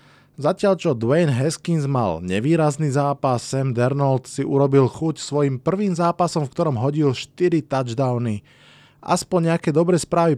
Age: 20-39